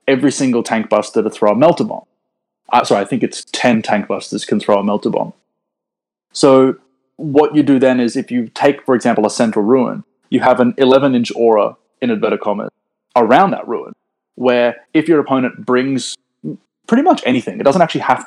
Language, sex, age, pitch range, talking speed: English, male, 20-39, 115-140 Hz, 195 wpm